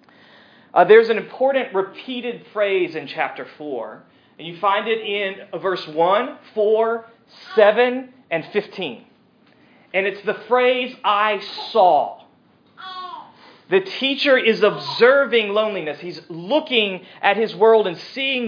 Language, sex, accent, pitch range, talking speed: English, male, American, 190-230 Hz, 125 wpm